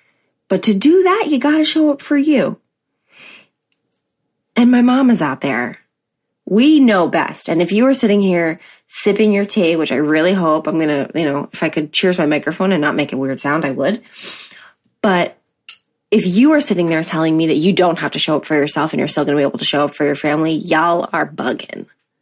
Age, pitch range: 20-39, 155-230 Hz